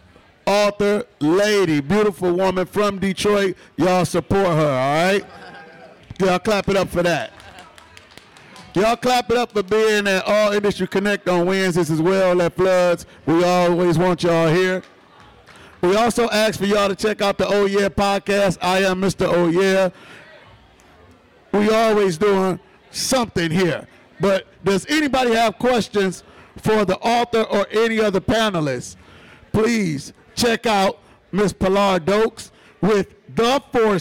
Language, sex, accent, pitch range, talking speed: English, male, American, 185-225 Hz, 140 wpm